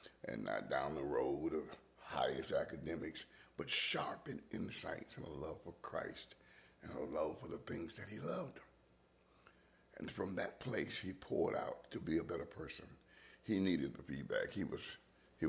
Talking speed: 175 wpm